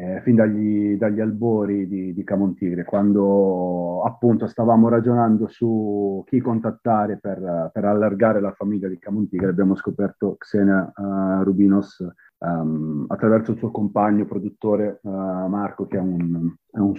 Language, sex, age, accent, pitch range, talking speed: Italian, male, 30-49, native, 95-115 Hz, 140 wpm